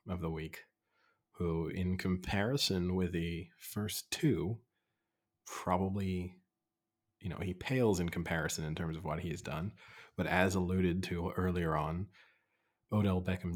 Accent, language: American, English